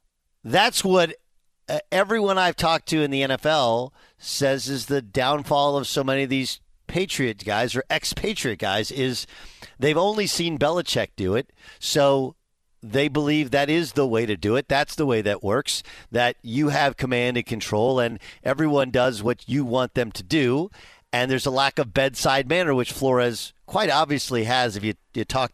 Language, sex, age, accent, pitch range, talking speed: English, male, 50-69, American, 120-165 Hz, 180 wpm